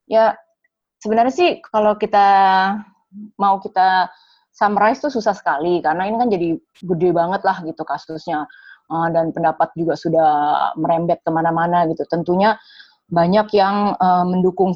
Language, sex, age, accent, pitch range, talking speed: Indonesian, female, 20-39, native, 165-210 Hz, 125 wpm